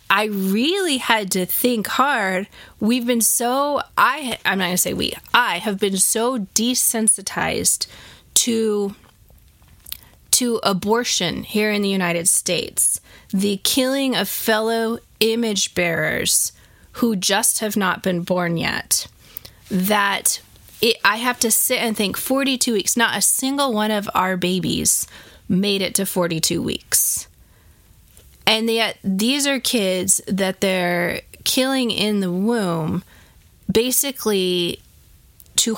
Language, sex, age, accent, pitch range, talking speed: English, female, 20-39, American, 190-235 Hz, 130 wpm